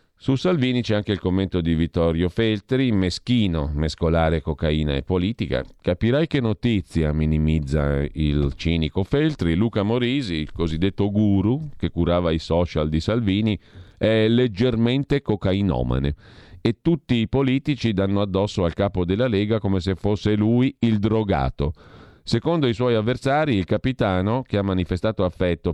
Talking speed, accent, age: 140 wpm, native, 40-59